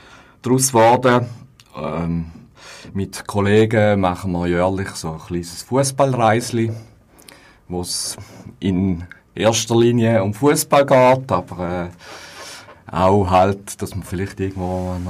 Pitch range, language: 90-110 Hz, German